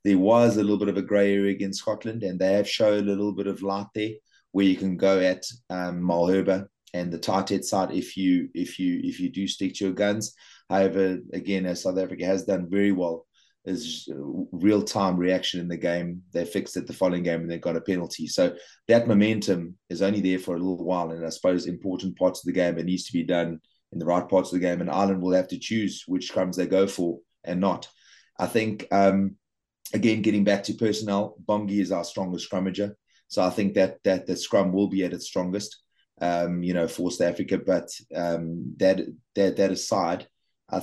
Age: 30-49